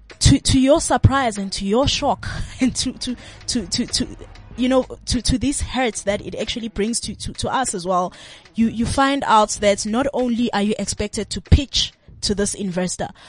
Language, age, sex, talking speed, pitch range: English, 20-39, female, 205 wpm, 190-235 Hz